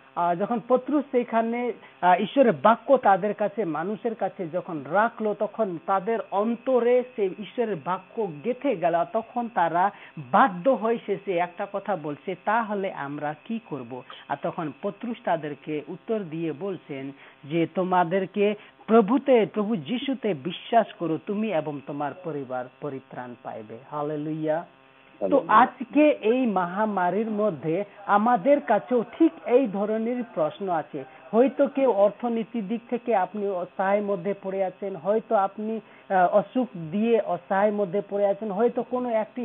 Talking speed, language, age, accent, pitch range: 55 wpm, Hindi, 40-59, native, 180-230 Hz